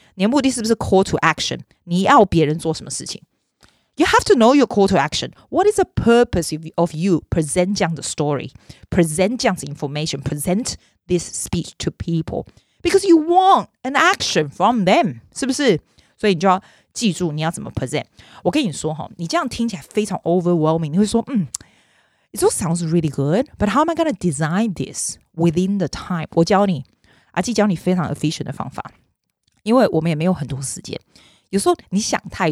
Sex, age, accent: female, 30-49, native